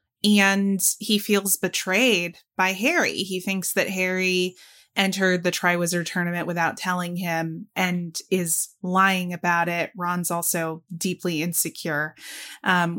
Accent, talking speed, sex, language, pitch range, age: American, 125 wpm, female, English, 170-195 Hz, 20-39